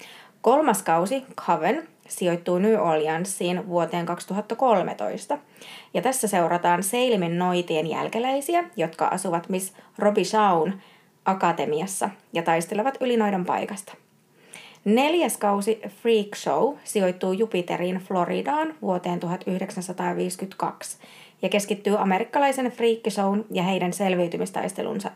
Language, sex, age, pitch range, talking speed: Finnish, female, 20-39, 175-220 Hz, 100 wpm